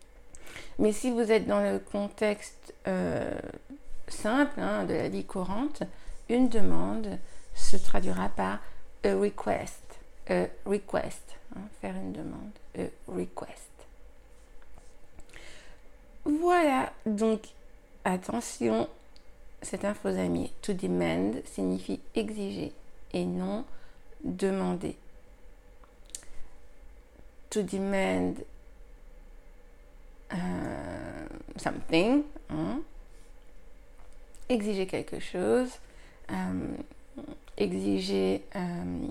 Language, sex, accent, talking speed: French, female, French, 80 wpm